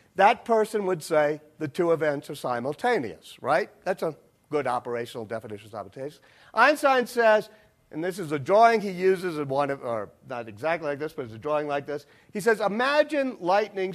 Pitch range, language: 145-225 Hz, English